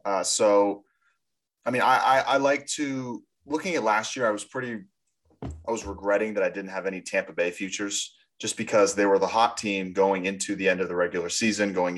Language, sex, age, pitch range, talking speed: English, male, 30-49, 100-125 Hz, 215 wpm